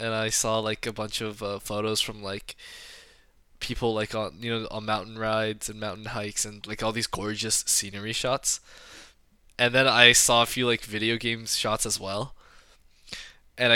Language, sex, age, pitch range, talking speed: English, male, 20-39, 100-120 Hz, 185 wpm